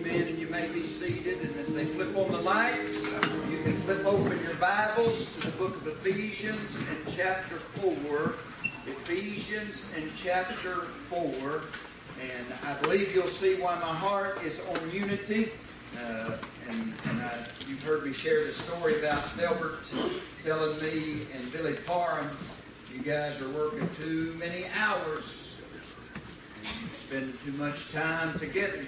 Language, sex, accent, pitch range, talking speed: English, male, American, 135-180 Hz, 145 wpm